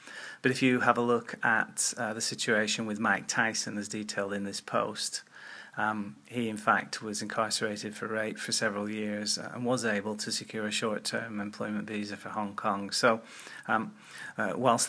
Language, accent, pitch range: English, British, 105-120 Hz